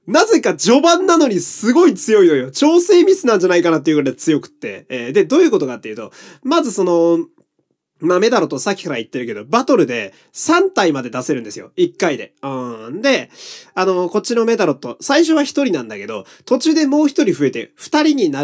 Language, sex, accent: Japanese, male, native